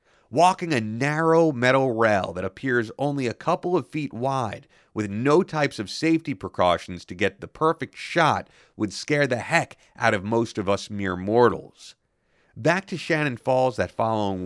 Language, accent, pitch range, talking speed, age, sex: English, American, 105-150 Hz, 170 wpm, 30-49, male